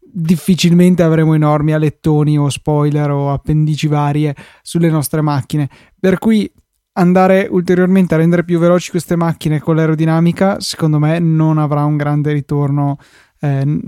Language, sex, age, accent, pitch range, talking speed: Italian, male, 20-39, native, 150-175 Hz, 140 wpm